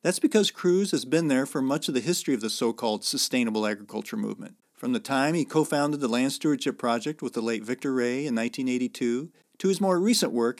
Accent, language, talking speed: American, English, 215 wpm